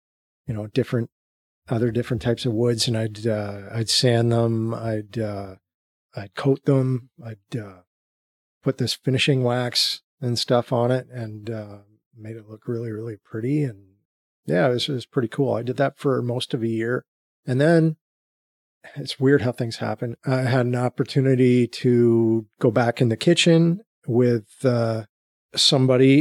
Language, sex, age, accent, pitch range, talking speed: English, male, 40-59, American, 110-130 Hz, 165 wpm